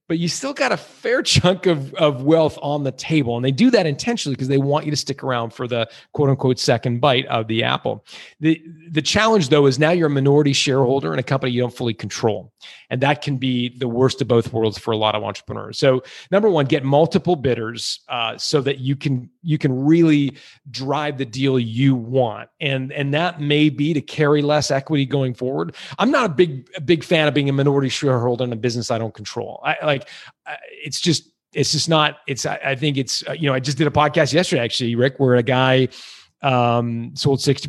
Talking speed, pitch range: 225 wpm, 125-150 Hz